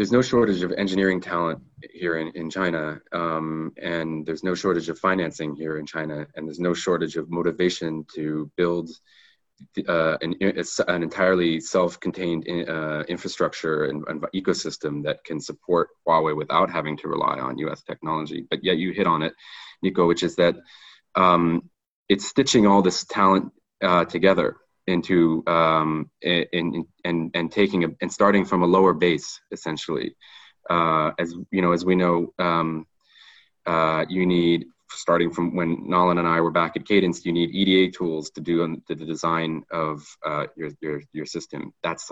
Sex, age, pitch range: male, 20-39, 80-90 Hz